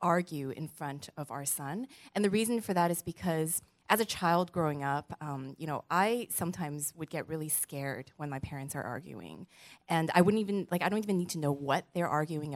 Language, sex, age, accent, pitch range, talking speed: English, female, 20-39, American, 155-205 Hz, 220 wpm